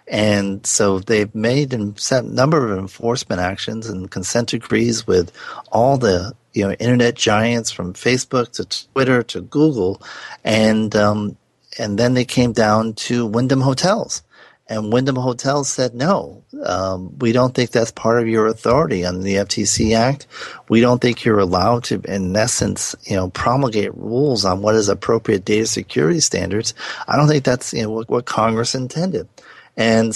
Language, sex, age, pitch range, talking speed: English, male, 40-59, 100-120 Hz, 165 wpm